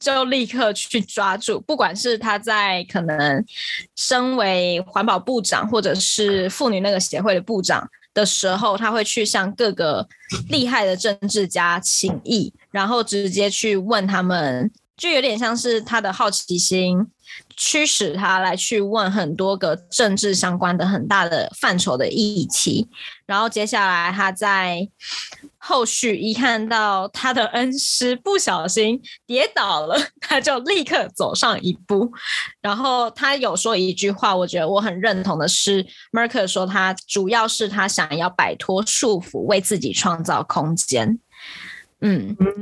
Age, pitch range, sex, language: 20-39, 190-230 Hz, female, Chinese